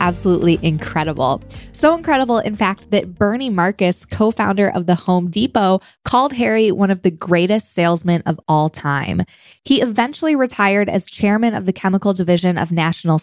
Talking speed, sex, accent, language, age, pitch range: 160 wpm, female, American, English, 20-39, 165-215 Hz